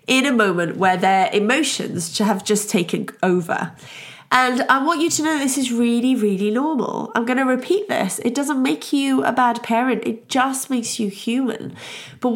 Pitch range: 210-255 Hz